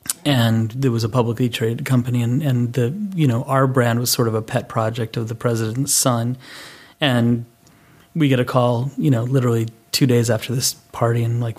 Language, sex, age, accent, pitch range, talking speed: English, male, 30-49, American, 120-140 Hz, 200 wpm